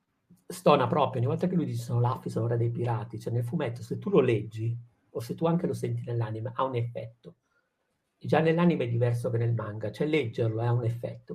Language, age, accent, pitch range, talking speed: Italian, 50-69, native, 110-130 Hz, 225 wpm